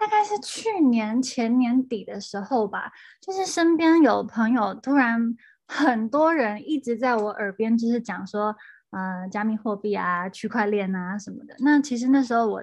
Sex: female